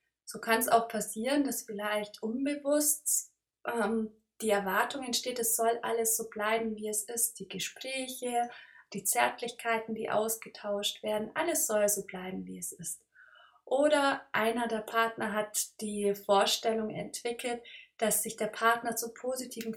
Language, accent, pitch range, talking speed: German, German, 210-265 Hz, 145 wpm